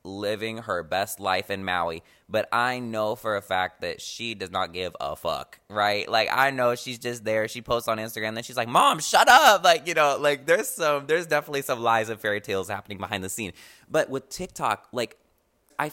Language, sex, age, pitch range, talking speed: English, male, 20-39, 100-130 Hz, 220 wpm